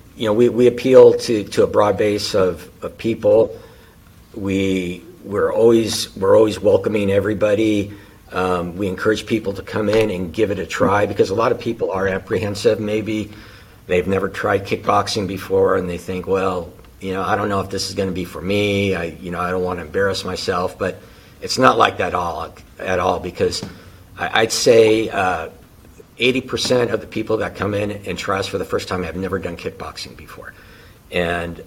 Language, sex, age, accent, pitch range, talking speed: English, male, 50-69, American, 90-115 Hz, 200 wpm